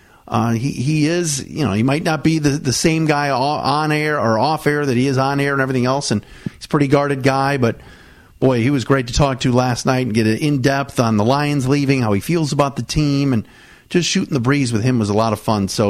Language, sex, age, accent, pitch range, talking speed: English, male, 40-59, American, 120-150 Hz, 260 wpm